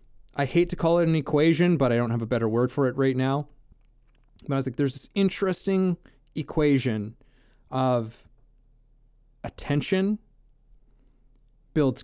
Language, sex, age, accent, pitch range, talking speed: English, male, 20-39, American, 120-145 Hz, 145 wpm